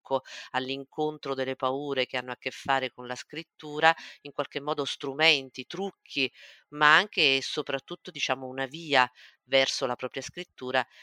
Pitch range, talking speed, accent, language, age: 125-145 Hz, 145 wpm, native, Italian, 50-69